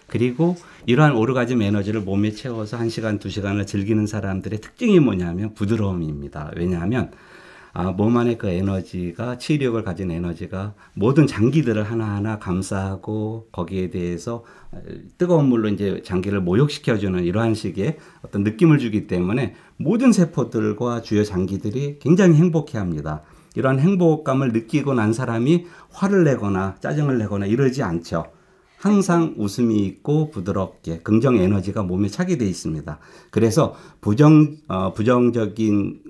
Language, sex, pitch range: Korean, male, 95-135 Hz